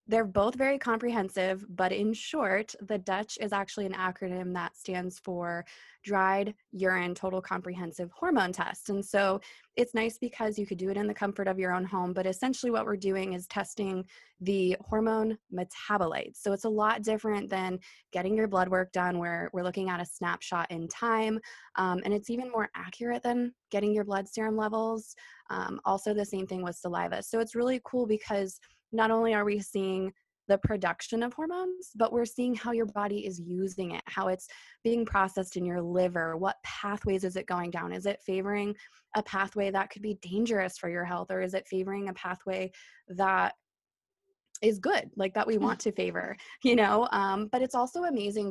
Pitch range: 185-220 Hz